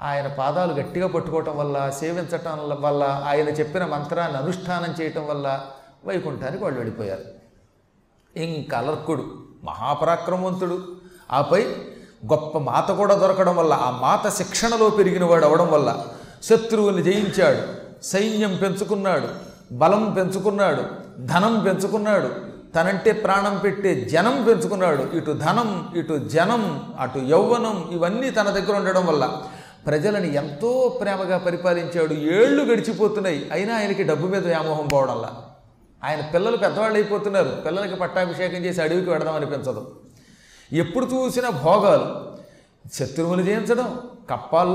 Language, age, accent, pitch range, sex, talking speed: Telugu, 40-59, native, 155-205 Hz, male, 115 wpm